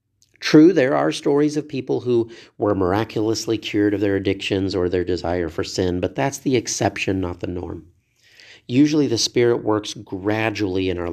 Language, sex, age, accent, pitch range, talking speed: English, male, 40-59, American, 100-120 Hz, 175 wpm